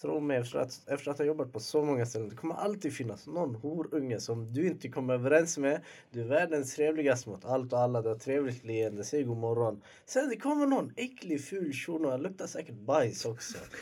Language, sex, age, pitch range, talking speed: Swedish, male, 20-39, 105-135 Hz, 220 wpm